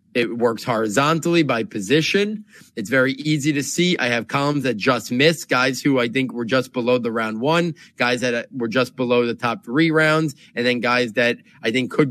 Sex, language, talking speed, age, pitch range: male, English, 210 wpm, 30-49, 125-155 Hz